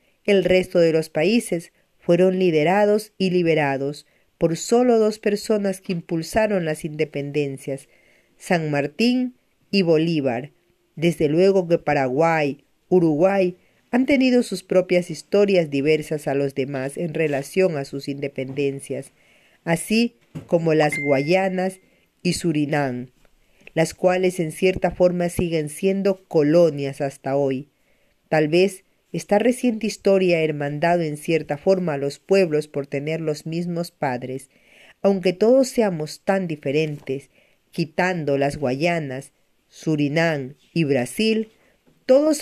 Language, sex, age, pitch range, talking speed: Spanish, female, 40-59, 145-190 Hz, 120 wpm